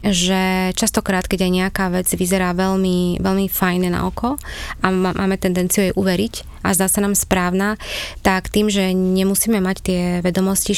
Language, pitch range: Slovak, 180-195 Hz